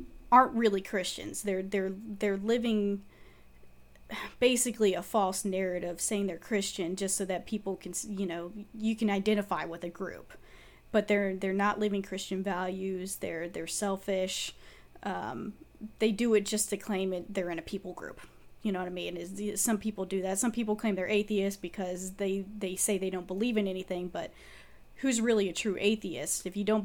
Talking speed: 185 wpm